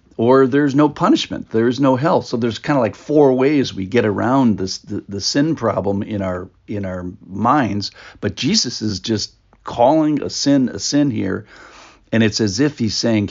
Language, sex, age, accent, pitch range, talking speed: English, male, 50-69, American, 105-135 Hz, 195 wpm